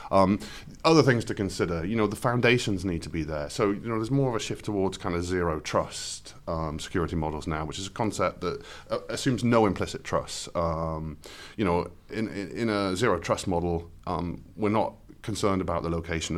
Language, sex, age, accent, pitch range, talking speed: English, male, 30-49, British, 85-105 Hz, 210 wpm